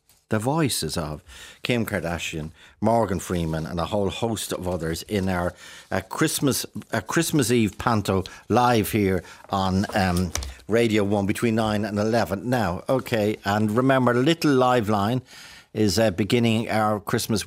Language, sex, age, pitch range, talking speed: English, male, 50-69, 95-120 Hz, 150 wpm